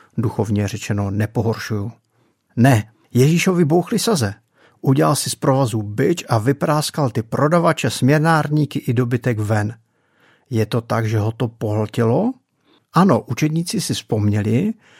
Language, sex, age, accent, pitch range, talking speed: Czech, male, 50-69, native, 110-145 Hz, 125 wpm